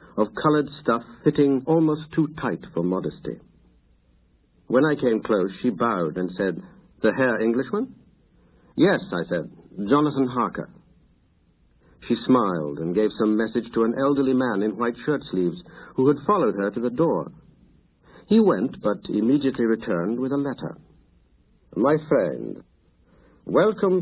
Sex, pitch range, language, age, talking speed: male, 100-150 Hz, English, 60-79, 140 wpm